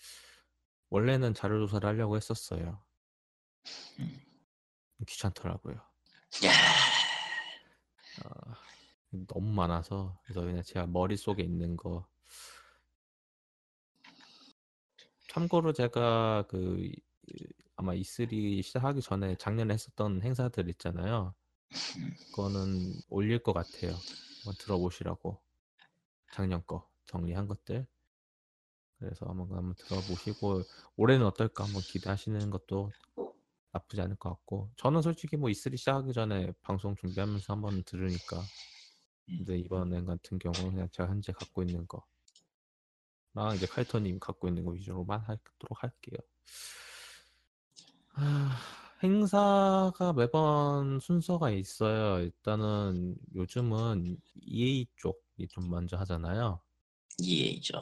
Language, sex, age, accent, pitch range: Korean, male, 20-39, native, 90-115 Hz